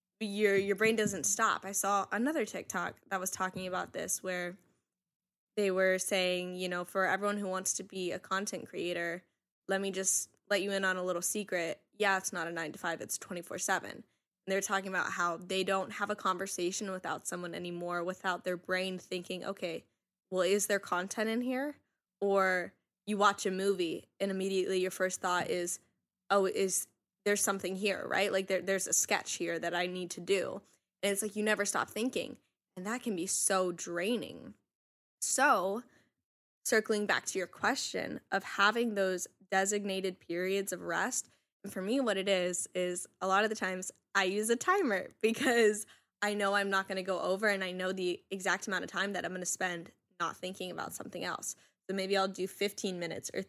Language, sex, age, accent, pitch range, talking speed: English, female, 10-29, American, 180-200 Hz, 200 wpm